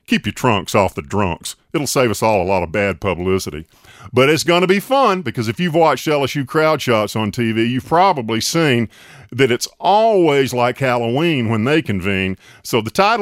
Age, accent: 40-59, American